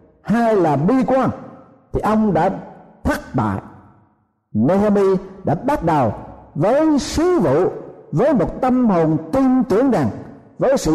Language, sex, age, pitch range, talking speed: Vietnamese, male, 50-69, 145-220 Hz, 135 wpm